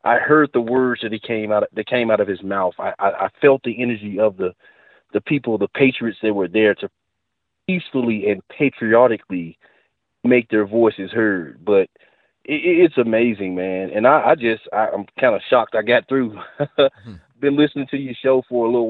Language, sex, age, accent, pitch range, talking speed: English, male, 30-49, American, 105-125 Hz, 200 wpm